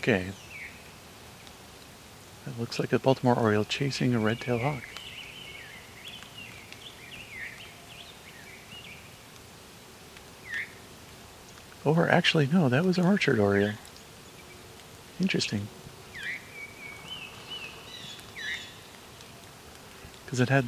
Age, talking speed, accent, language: 50-69, 70 wpm, American, English